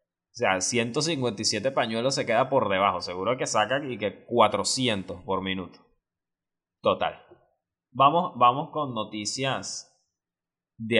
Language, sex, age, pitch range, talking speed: Spanish, male, 20-39, 110-150 Hz, 110 wpm